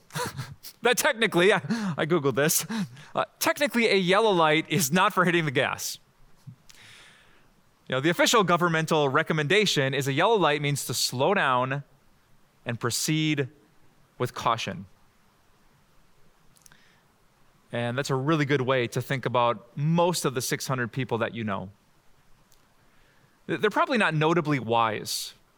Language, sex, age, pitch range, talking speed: English, male, 20-39, 130-185 Hz, 130 wpm